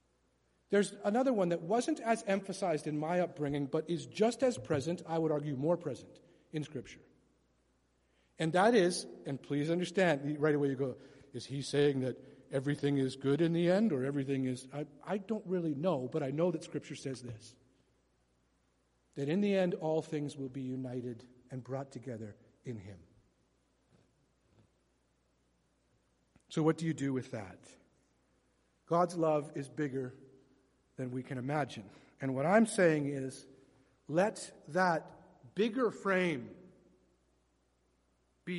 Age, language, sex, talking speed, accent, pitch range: 50-69, English, male, 150 wpm, American, 130-185 Hz